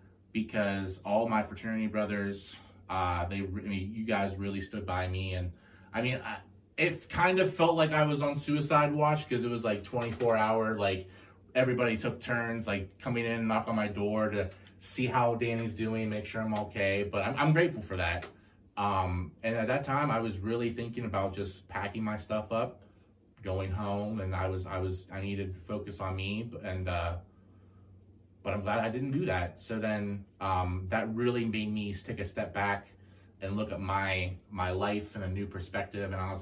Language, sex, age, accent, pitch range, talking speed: English, male, 20-39, American, 95-110 Hz, 205 wpm